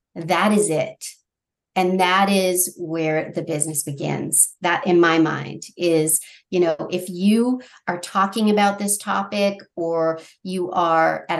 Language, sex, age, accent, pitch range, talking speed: English, female, 40-59, American, 170-215 Hz, 145 wpm